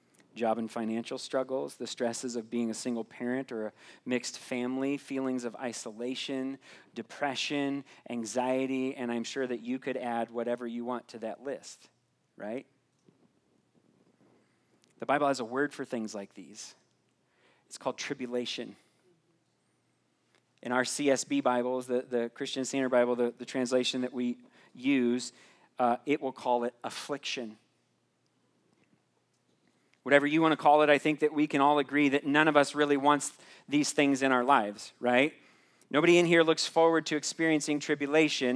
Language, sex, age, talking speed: English, male, 40-59, 155 wpm